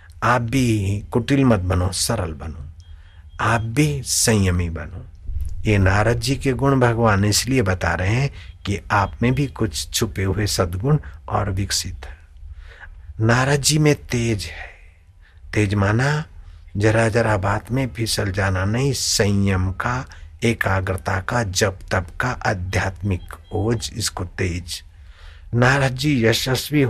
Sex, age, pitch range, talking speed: male, 60-79, 90-125 Hz, 135 wpm